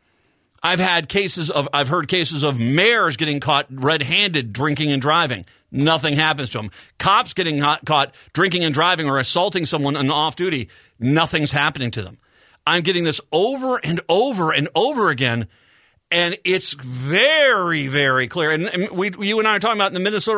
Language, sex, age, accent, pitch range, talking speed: English, male, 50-69, American, 135-180 Hz, 180 wpm